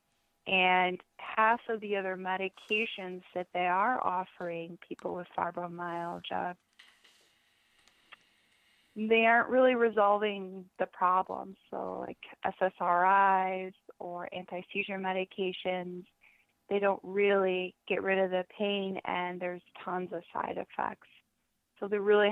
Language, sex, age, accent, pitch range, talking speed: English, female, 20-39, American, 180-205 Hz, 115 wpm